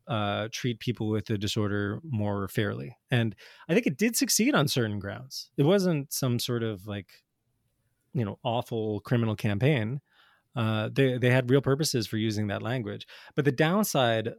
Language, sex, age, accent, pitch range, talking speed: English, male, 20-39, American, 105-130 Hz, 170 wpm